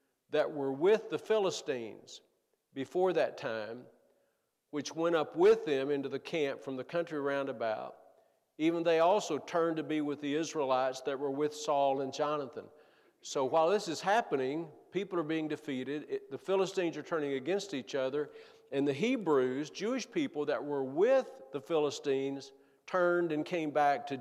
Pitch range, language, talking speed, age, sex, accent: 135-180 Hz, English, 165 wpm, 50-69, male, American